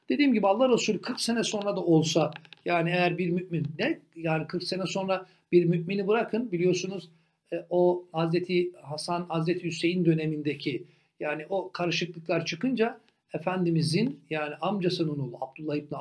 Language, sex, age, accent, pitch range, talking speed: Turkish, male, 60-79, native, 150-185 Hz, 140 wpm